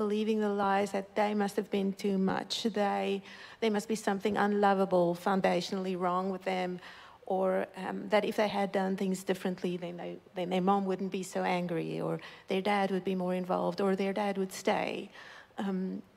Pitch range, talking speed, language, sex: 190-220 Hz, 190 wpm, English, female